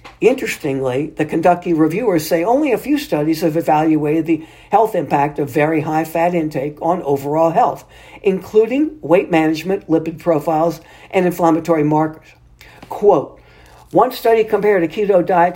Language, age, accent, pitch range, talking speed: English, 60-79, American, 155-190 Hz, 145 wpm